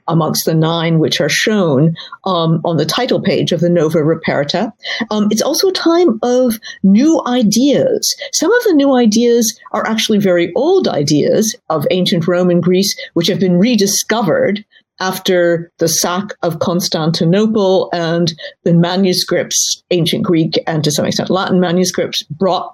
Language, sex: Dutch, female